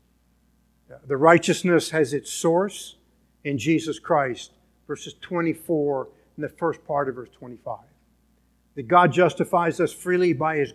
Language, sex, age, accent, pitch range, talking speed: English, male, 50-69, American, 135-185 Hz, 135 wpm